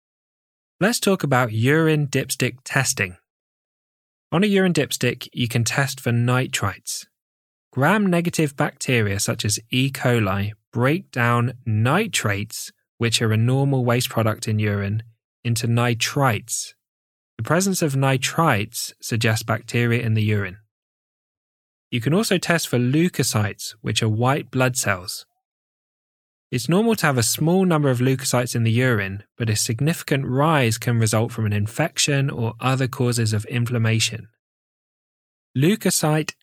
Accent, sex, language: British, male, English